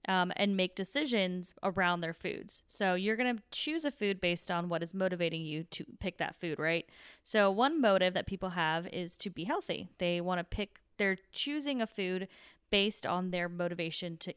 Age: 20-39